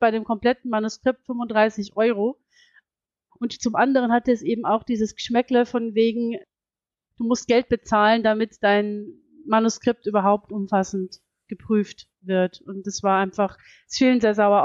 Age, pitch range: 30-49, 210-240 Hz